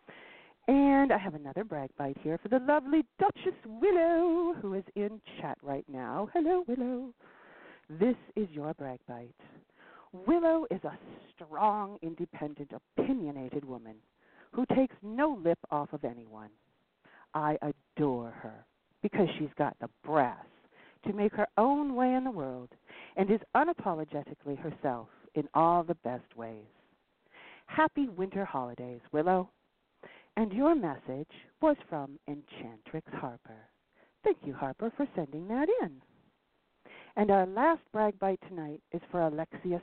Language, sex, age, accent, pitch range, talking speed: English, female, 50-69, American, 140-215 Hz, 135 wpm